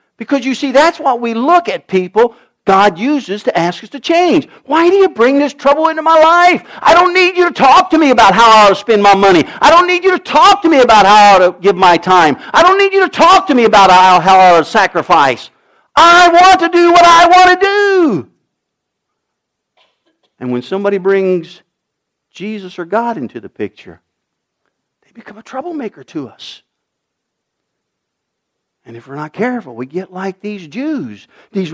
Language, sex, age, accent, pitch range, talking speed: English, male, 50-69, American, 190-305 Hz, 200 wpm